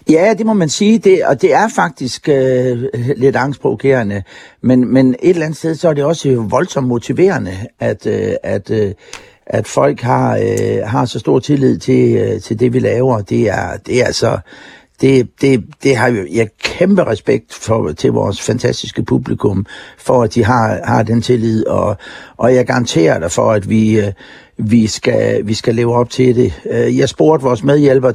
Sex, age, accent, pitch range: male, 60-79, native, 110-130 Hz